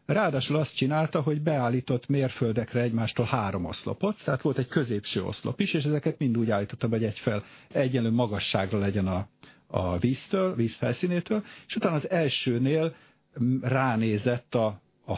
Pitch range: 110-140 Hz